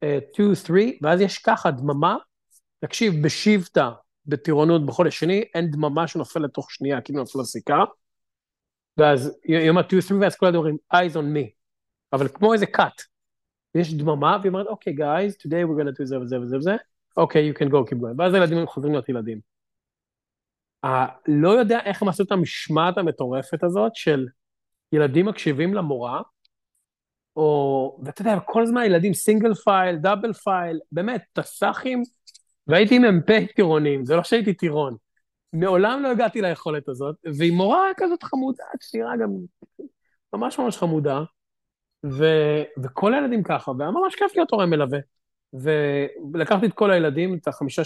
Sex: male